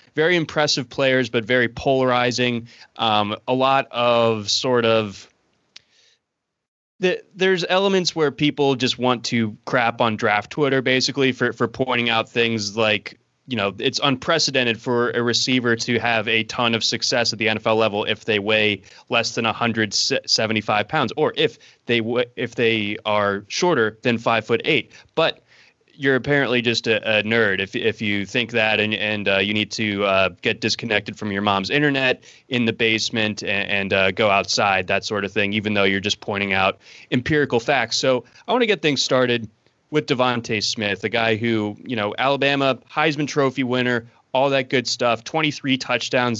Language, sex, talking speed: English, male, 175 wpm